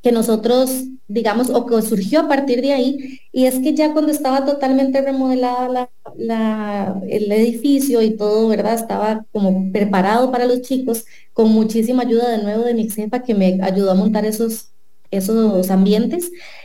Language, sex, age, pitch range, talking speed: English, female, 30-49, 220-275 Hz, 170 wpm